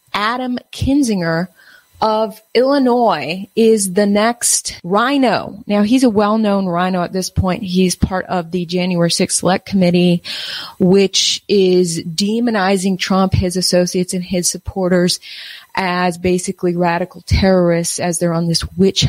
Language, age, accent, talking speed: English, 30-49, American, 130 wpm